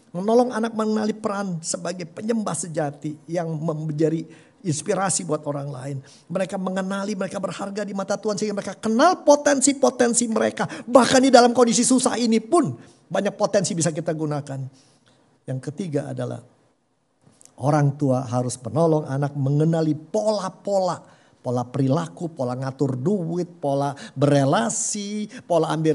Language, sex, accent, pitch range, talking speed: Indonesian, male, native, 145-215 Hz, 130 wpm